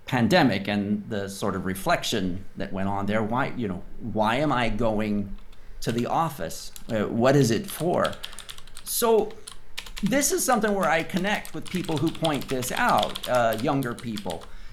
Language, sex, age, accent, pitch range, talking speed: English, male, 50-69, American, 105-165 Hz, 165 wpm